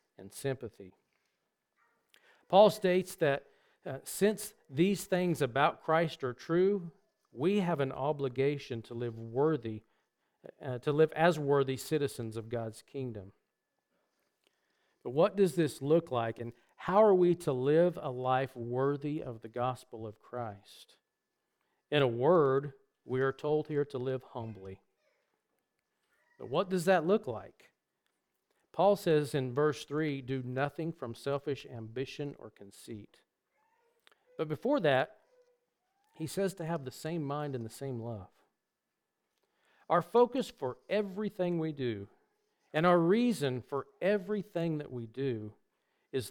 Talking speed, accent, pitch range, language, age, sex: 135 wpm, American, 125-170 Hz, English, 50-69, male